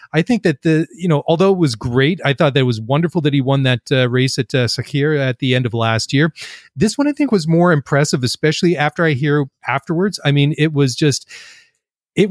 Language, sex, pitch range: English, male, 130-165 Hz